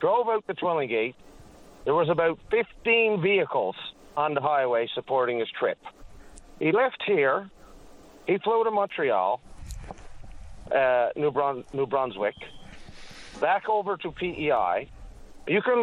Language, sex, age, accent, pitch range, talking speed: English, male, 50-69, American, 130-200 Hz, 125 wpm